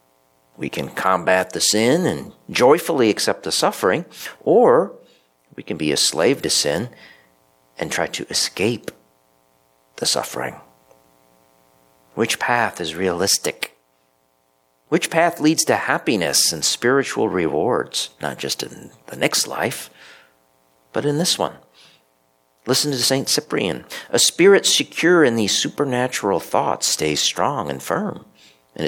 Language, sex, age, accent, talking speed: English, male, 50-69, American, 130 wpm